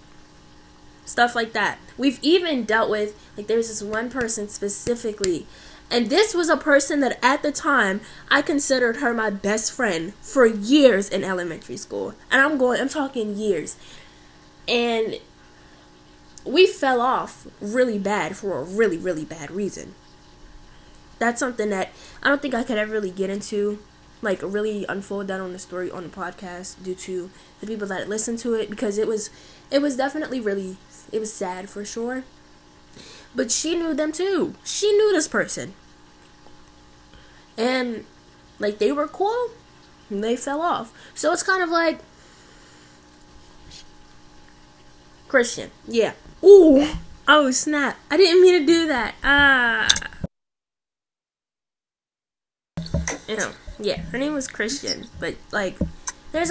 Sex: female